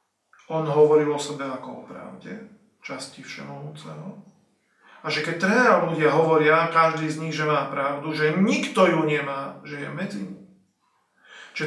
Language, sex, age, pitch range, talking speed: Slovak, male, 40-59, 145-165 Hz, 155 wpm